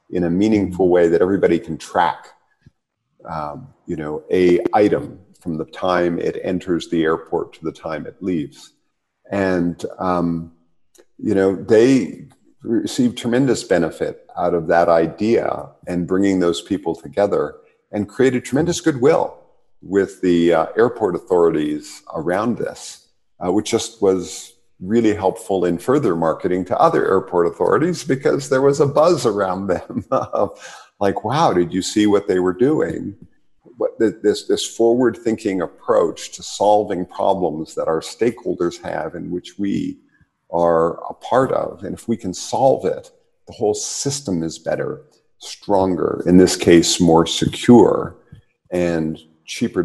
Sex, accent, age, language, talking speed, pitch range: male, American, 50-69, English, 145 wpm, 85-115 Hz